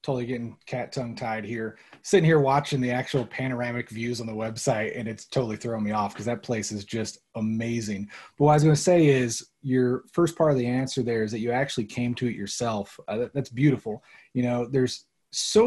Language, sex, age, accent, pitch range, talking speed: English, male, 30-49, American, 115-135 Hz, 220 wpm